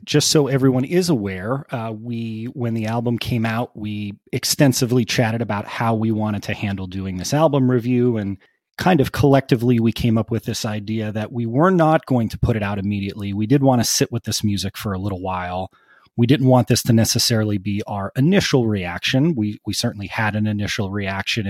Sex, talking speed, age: male, 205 wpm, 30-49